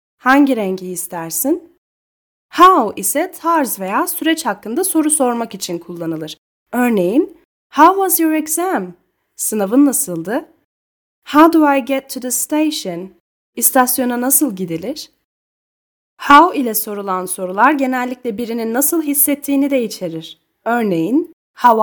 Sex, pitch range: female, 205-300 Hz